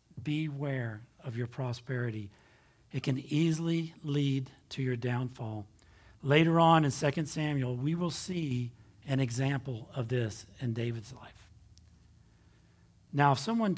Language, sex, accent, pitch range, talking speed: English, male, American, 120-155 Hz, 125 wpm